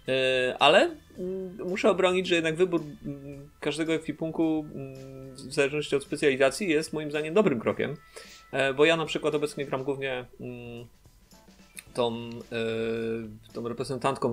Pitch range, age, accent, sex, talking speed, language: 110-140 Hz, 30-49, native, male, 115 wpm, Polish